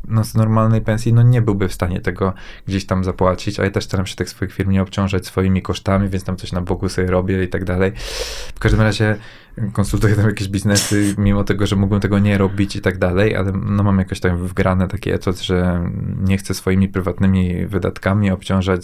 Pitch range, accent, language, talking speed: 95-110 Hz, native, Polish, 215 wpm